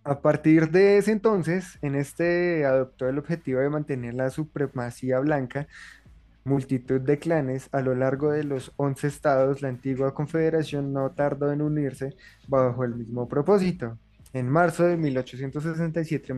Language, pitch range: Spanish, 130-150 Hz